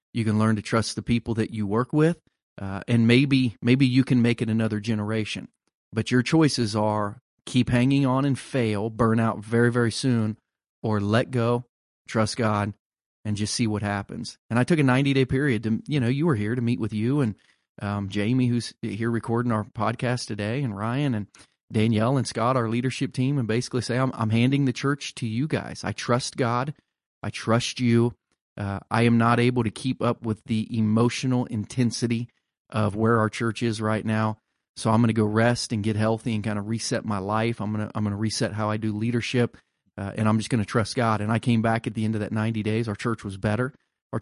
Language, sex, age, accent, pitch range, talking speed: English, male, 30-49, American, 110-125 Hz, 225 wpm